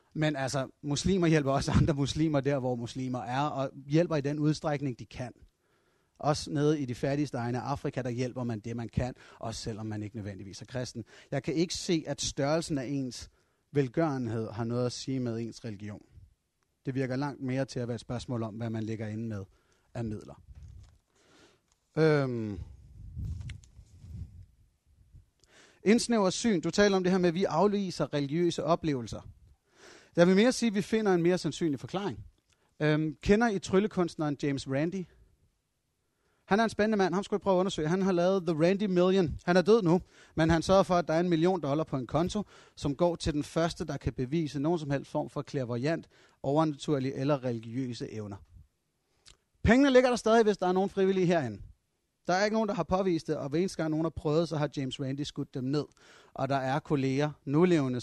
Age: 30-49